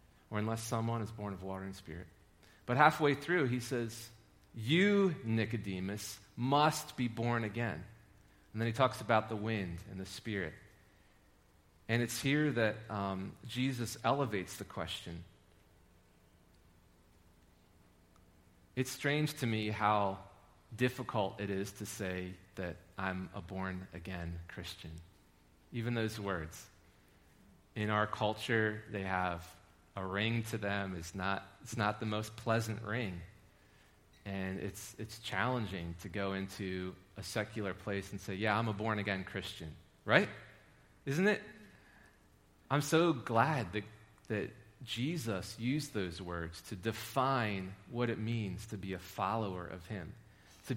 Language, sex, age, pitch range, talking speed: English, male, 40-59, 95-115 Hz, 135 wpm